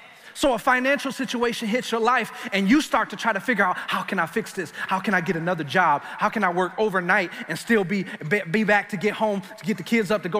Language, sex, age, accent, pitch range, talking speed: English, male, 30-49, American, 155-225 Hz, 265 wpm